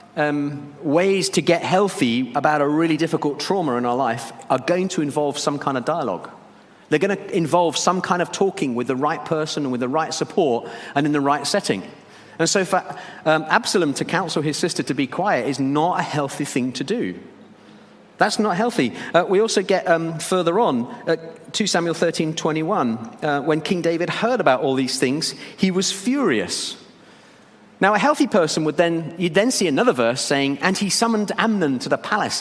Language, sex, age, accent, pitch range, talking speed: English, male, 40-59, British, 145-195 Hz, 200 wpm